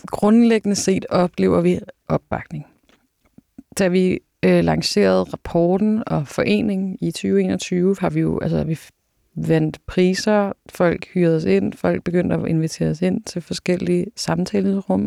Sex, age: female, 30-49